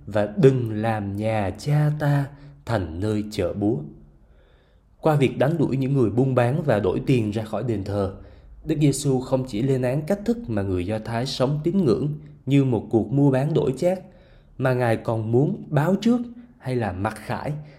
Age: 20-39